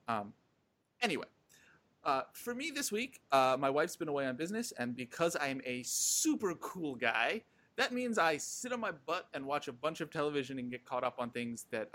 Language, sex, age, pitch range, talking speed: English, male, 30-49, 120-175 Hz, 205 wpm